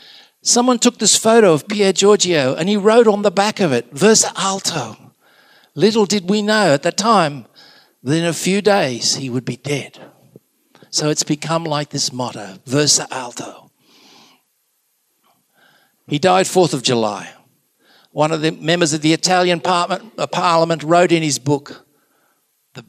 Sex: male